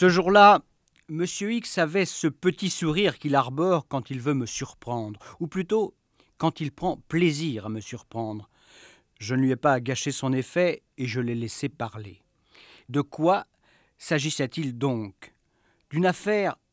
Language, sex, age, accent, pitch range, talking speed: French, male, 50-69, French, 125-170 Hz, 155 wpm